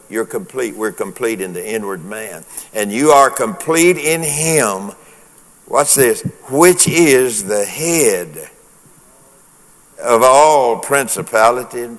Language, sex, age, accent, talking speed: English, male, 60-79, American, 120 wpm